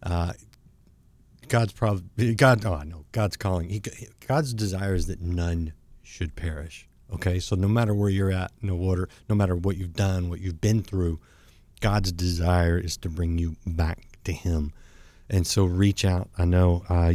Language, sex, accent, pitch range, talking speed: English, male, American, 90-110 Hz, 180 wpm